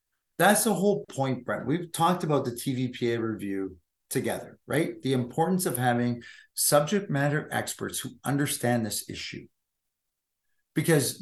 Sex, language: male, English